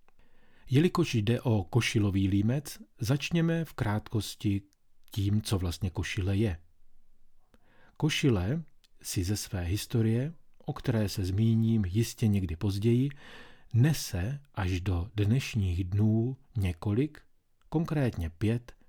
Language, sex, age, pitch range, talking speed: Czech, male, 40-59, 95-125 Hz, 105 wpm